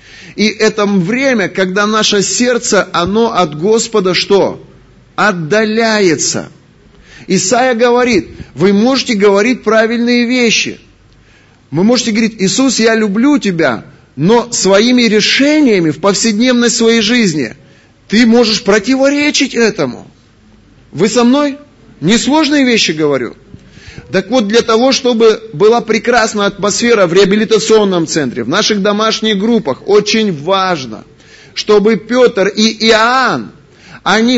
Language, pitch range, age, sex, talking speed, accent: Russian, 190-235 Hz, 30-49, male, 110 wpm, native